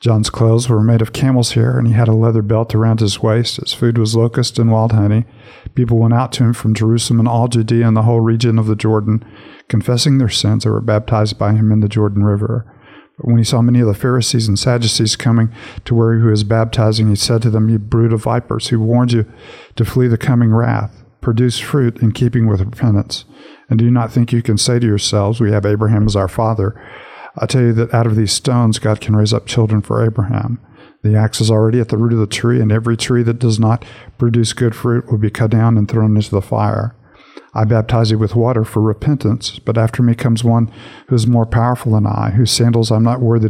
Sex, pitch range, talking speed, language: male, 110-120 Hz, 240 wpm, English